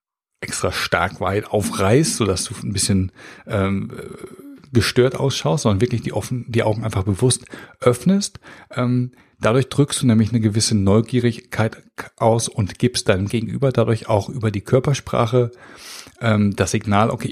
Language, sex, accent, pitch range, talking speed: German, male, German, 100-125 Hz, 140 wpm